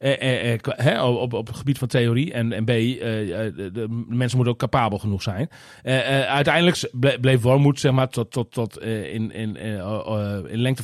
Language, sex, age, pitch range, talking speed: Dutch, male, 40-59, 110-135 Hz, 160 wpm